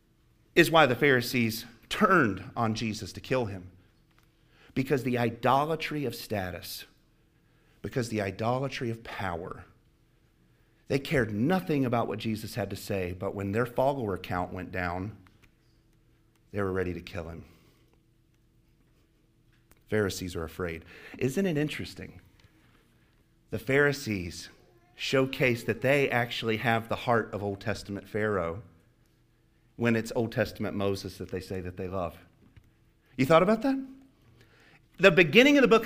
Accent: American